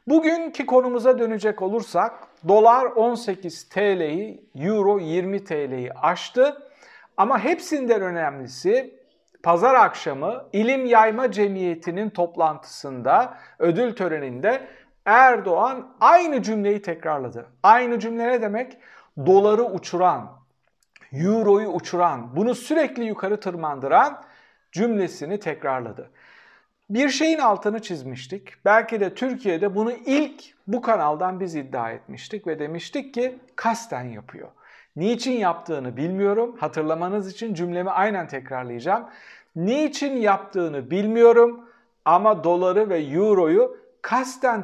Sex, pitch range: male, 170-240 Hz